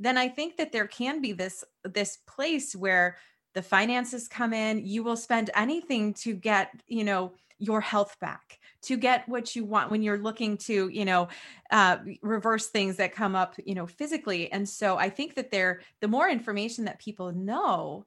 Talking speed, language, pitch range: 195 wpm, English, 195-240 Hz